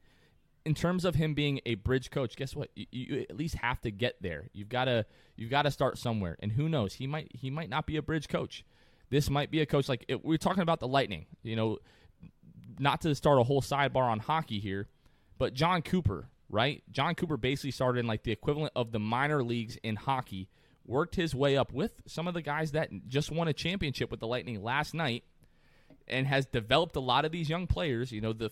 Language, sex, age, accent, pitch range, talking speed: English, male, 20-39, American, 115-155 Hz, 230 wpm